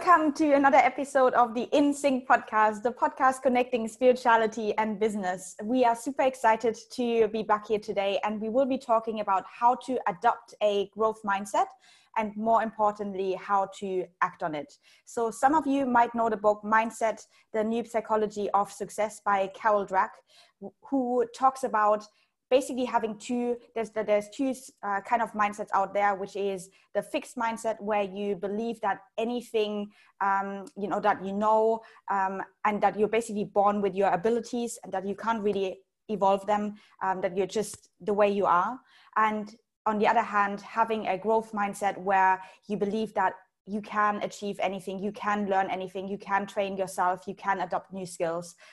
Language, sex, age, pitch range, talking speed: English, female, 20-39, 195-230 Hz, 180 wpm